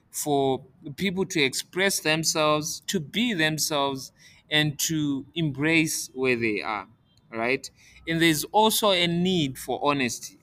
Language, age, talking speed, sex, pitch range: English, 20-39, 125 wpm, male, 125-165 Hz